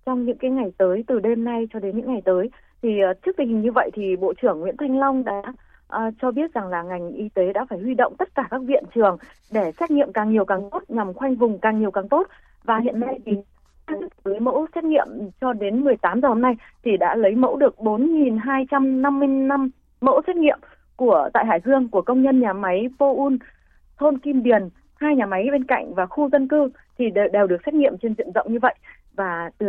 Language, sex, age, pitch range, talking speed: Vietnamese, female, 20-39, 210-280 Hz, 240 wpm